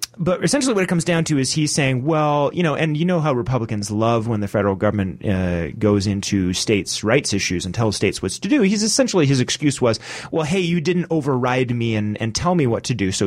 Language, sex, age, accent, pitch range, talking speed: English, male, 30-49, American, 100-140 Hz, 245 wpm